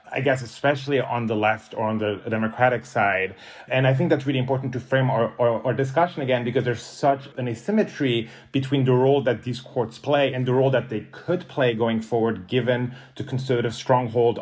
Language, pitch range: English, 115-135 Hz